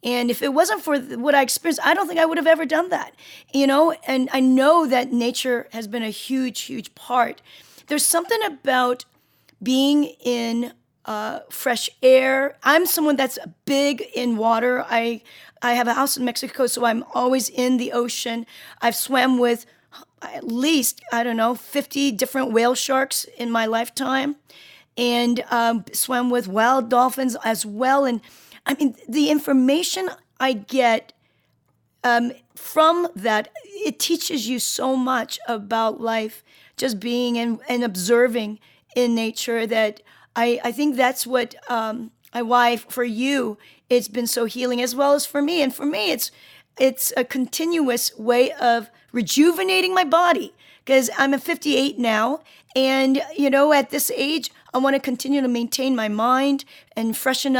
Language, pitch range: English, 235-280 Hz